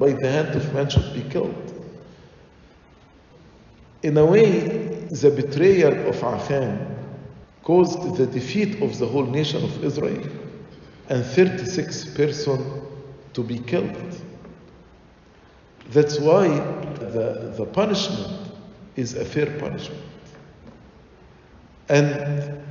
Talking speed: 105 wpm